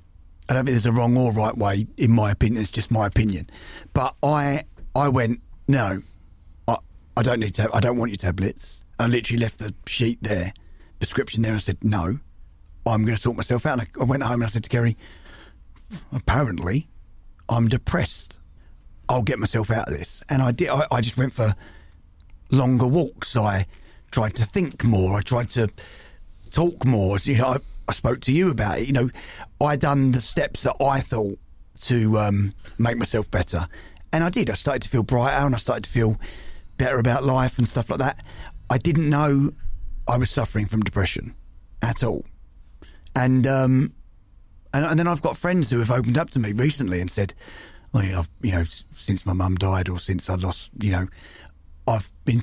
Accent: British